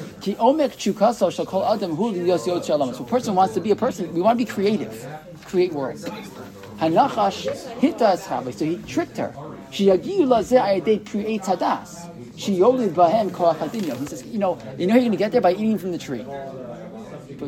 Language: English